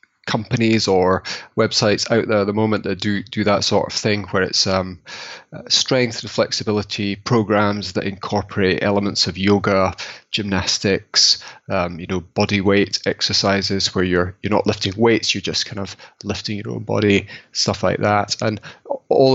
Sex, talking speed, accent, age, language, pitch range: male, 165 wpm, British, 30-49, English, 100-110 Hz